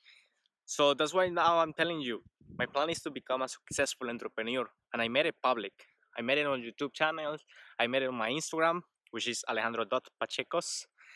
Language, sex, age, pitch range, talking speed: English, male, 20-39, 130-165 Hz, 190 wpm